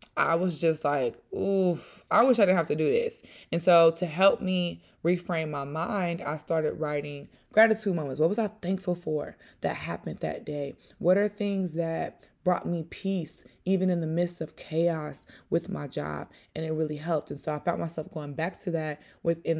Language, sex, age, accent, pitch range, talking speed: English, female, 20-39, American, 145-175 Hz, 200 wpm